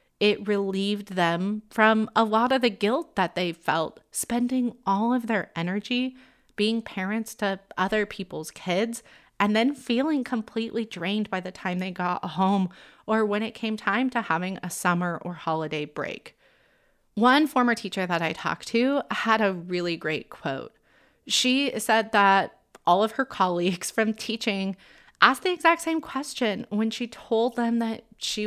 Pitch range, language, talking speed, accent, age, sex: 185-235 Hz, English, 165 wpm, American, 30-49, female